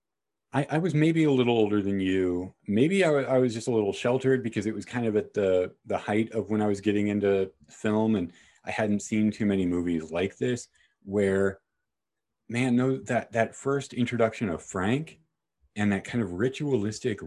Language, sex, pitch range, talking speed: English, male, 100-125 Hz, 200 wpm